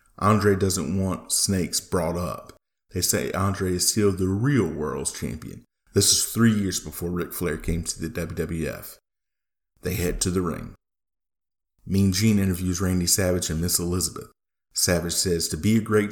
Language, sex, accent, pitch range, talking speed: English, male, American, 85-100 Hz, 170 wpm